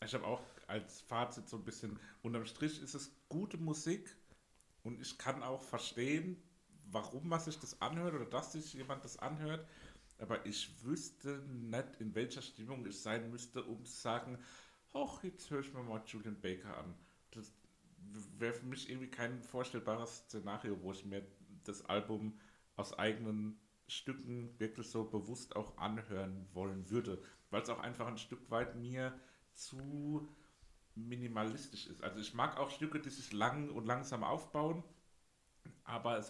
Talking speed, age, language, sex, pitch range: 165 wpm, 60-79, German, male, 110-140 Hz